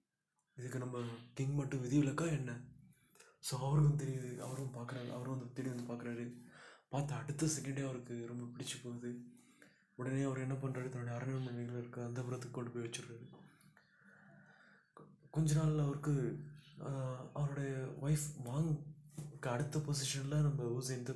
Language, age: Tamil, 20-39